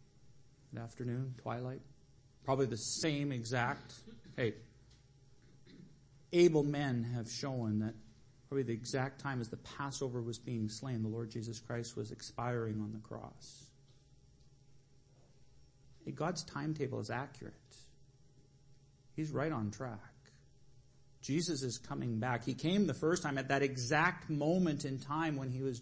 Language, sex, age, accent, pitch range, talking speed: English, male, 40-59, American, 120-145 Hz, 135 wpm